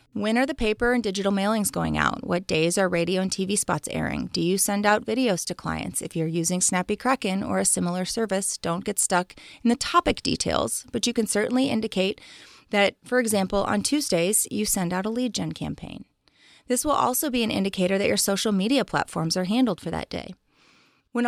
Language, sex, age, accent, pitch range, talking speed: English, female, 30-49, American, 185-245 Hz, 210 wpm